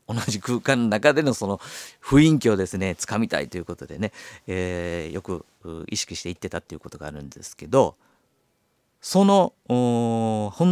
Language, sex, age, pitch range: Japanese, male, 40-59, 85-120 Hz